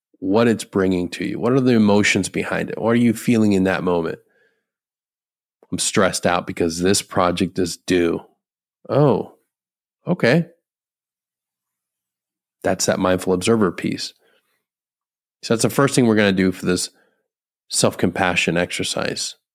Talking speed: 140 wpm